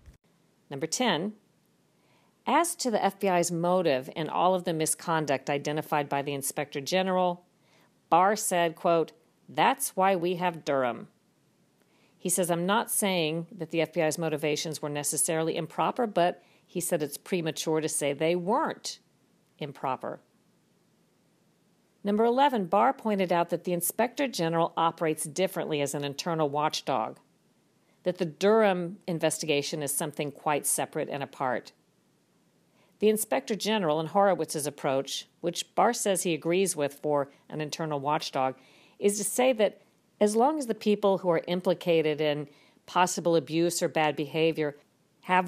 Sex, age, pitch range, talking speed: female, 50-69, 155-195 Hz, 140 wpm